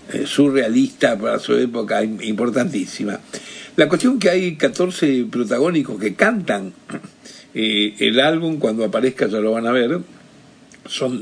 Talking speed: 130 wpm